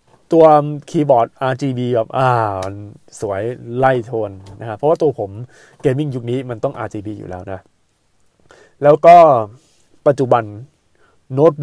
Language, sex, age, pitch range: Thai, male, 20-39, 115-150 Hz